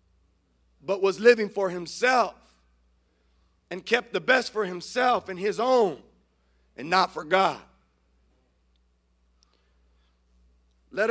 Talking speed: 105 wpm